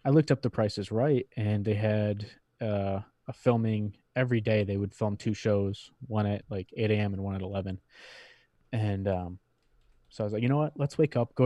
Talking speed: 215 wpm